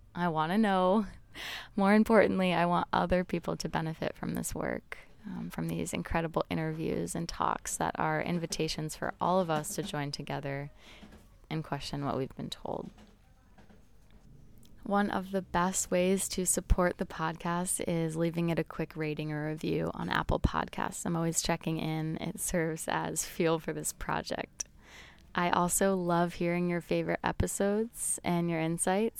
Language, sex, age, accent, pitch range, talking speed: English, female, 20-39, American, 155-180 Hz, 160 wpm